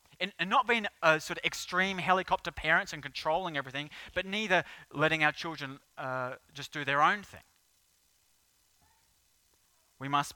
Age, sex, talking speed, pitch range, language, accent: 30-49, male, 140 wpm, 130-175 Hz, English, Australian